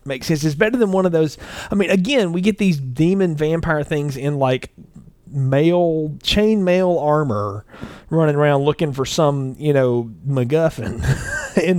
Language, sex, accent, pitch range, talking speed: English, male, American, 130-170 Hz, 160 wpm